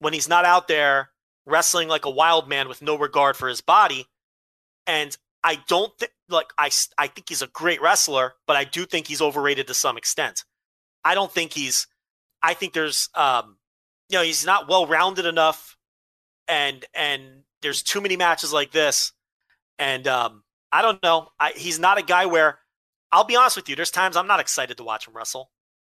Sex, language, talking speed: male, English, 195 wpm